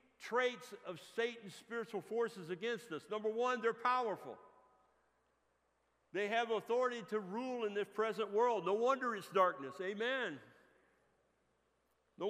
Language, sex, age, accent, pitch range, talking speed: English, male, 60-79, American, 185-235 Hz, 125 wpm